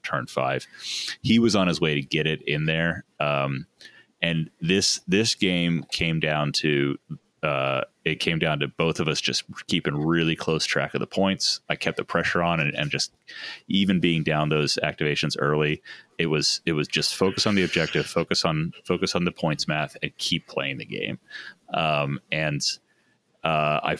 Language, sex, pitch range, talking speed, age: English, male, 70-85 Hz, 190 wpm, 30-49